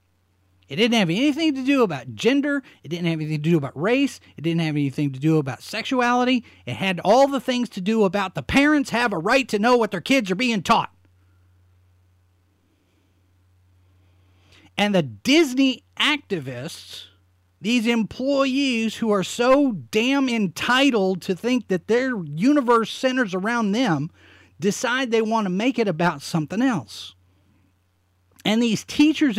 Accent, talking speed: American, 155 wpm